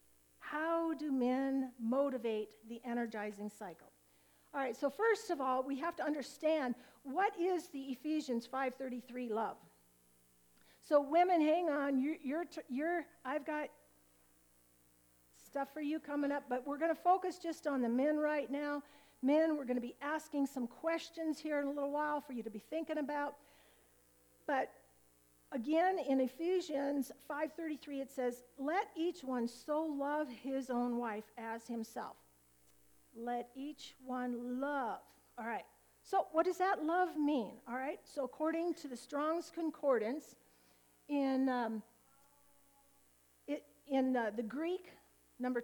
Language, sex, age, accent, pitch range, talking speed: English, female, 50-69, American, 225-300 Hz, 145 wpm